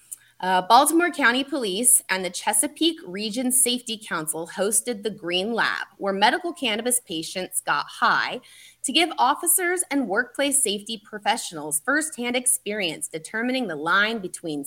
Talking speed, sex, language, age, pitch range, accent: 135 wpm, female, English, 20-39, 180-255 Hz, American